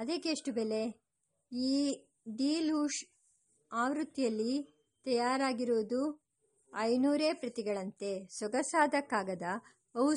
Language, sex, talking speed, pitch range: English, male, 75 wpm, 225-285 Hz